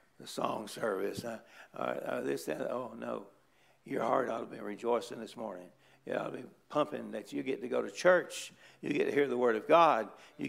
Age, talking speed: 60-79, 225 wpm